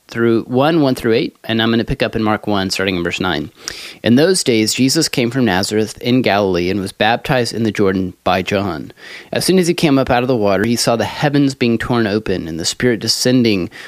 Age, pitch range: 30-49, 105-135 Hz